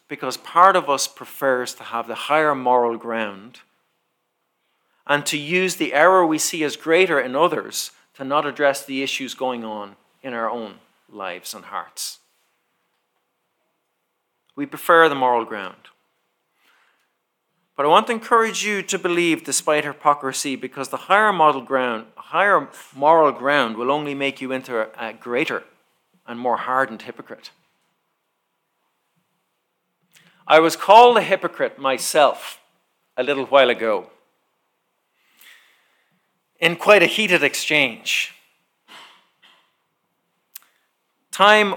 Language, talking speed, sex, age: English, 120 wpm, male, 40-59